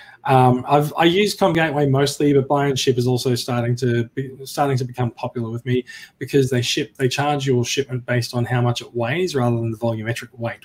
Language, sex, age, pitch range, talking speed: English, male, 20-39, 125-145 Hz, 220 wpm